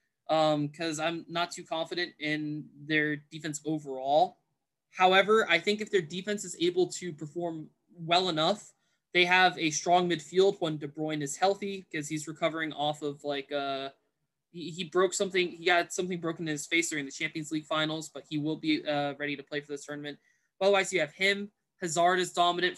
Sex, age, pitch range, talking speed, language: male, 20-39, 150-180 Hz, 195 wpm, English